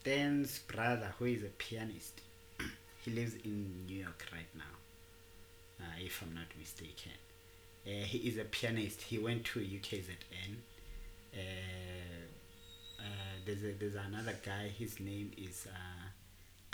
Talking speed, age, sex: 135 wpm, 30-49, male